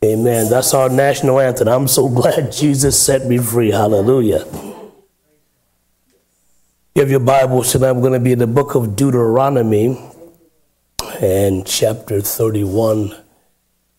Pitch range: 105-140 Hz